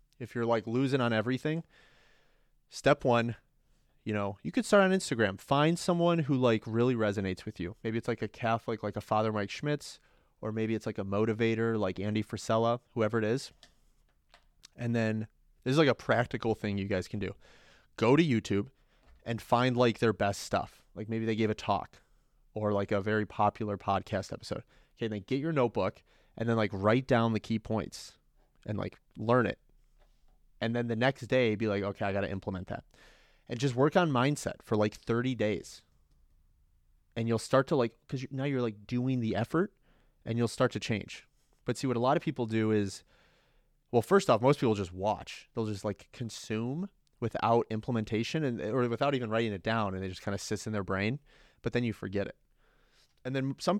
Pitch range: 105-130 Hz